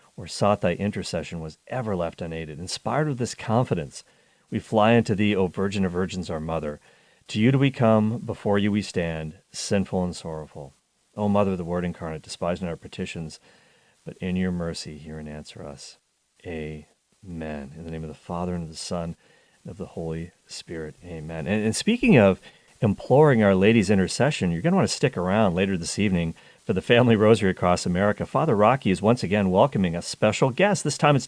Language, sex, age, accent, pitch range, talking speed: English, male, 40-59, American, 85-110 Hz, 200 wpm